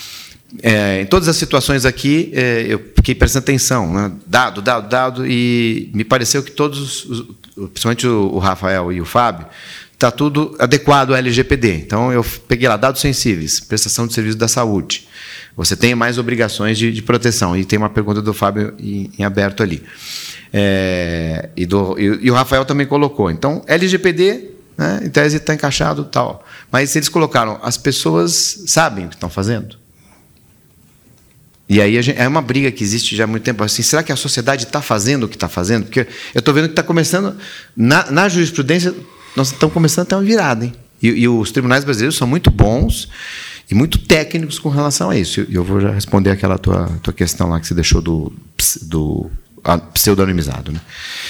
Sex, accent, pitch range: male, Brazilian, 100-140 Hz